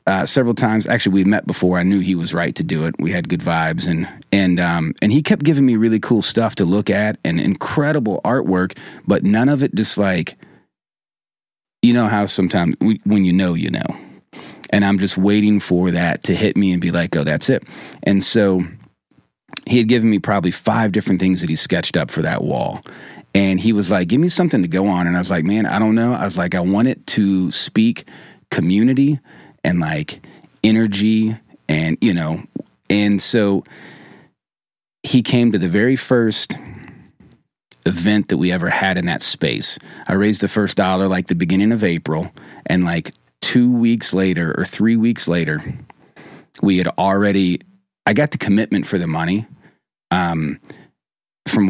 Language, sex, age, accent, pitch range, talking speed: English, male, 30-49, American, 90-110 Hz, 190 wpm